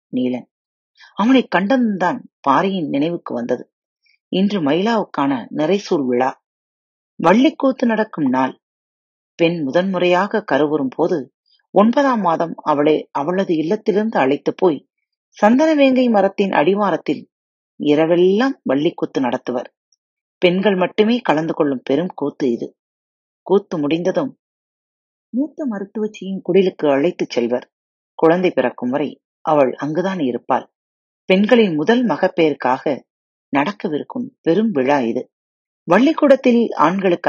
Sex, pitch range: female, 150-230 Hz